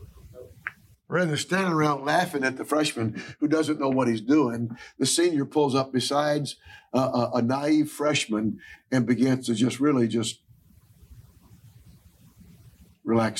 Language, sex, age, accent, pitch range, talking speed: English, male, 60-79, American, 115-150 Hz, 140 wpm